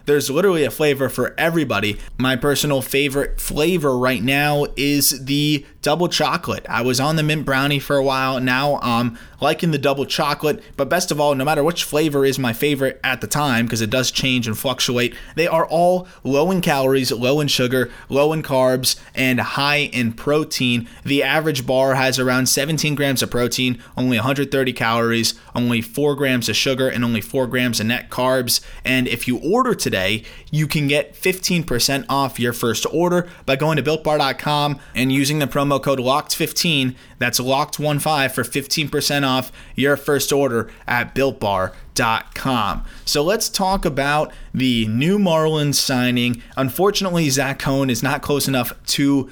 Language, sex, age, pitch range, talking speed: English, male, 20-39, 125-145 Hz, 170 wpm